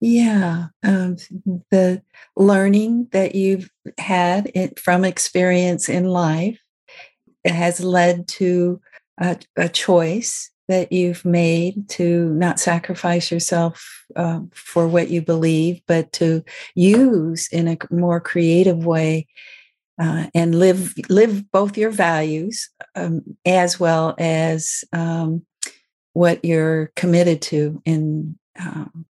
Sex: female